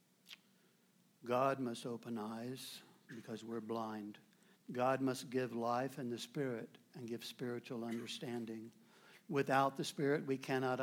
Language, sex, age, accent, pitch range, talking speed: English, male, 60-79, American, 120-170 Hz, 125 wpm